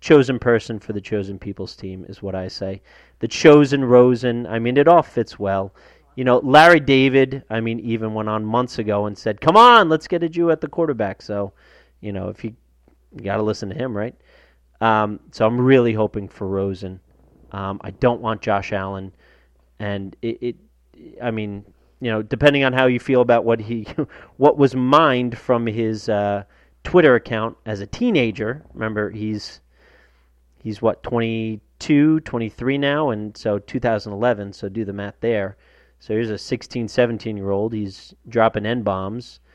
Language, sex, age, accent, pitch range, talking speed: English, male, 30-49, American, 100-120 Hz, 175 wpm